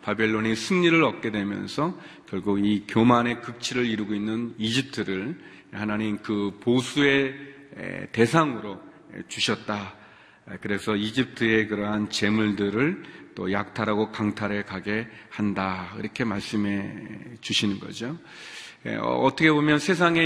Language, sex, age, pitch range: Korean, male, 40-59, 105-130 Hz